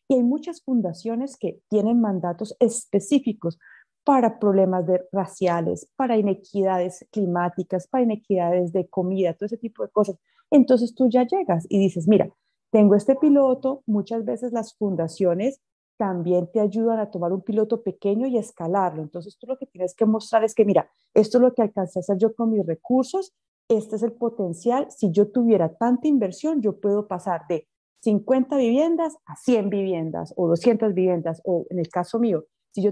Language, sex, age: English, female, 30-49